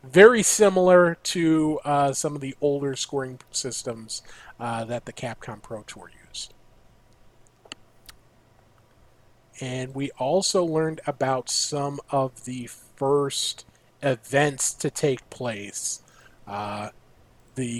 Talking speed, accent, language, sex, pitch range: 110 wpm, American, English, male, 120-150 Hz